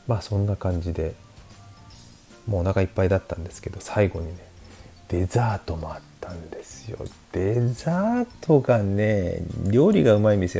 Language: Japanese